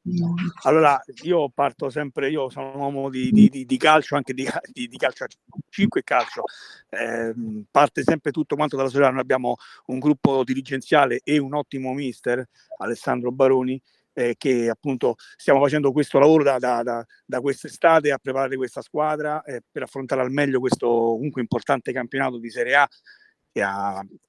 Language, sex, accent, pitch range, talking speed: Italian, male, native, 130-160 Hz, 160 wpm